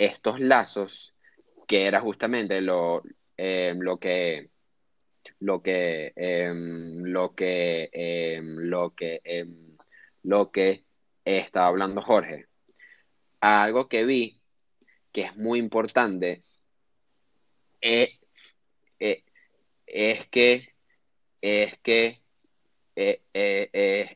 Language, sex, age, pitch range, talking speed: Spanish, male, 20-39, 90-110 Hz, 70 wpm